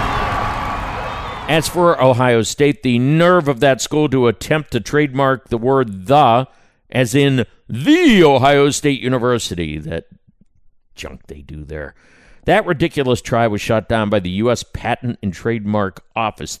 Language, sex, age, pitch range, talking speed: English, male, 50-69, 105-155 Hz, 145 wpm